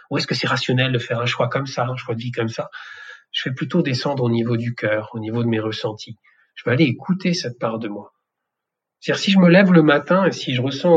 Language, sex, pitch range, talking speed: French, male, 125-165 Hz, 270 wpm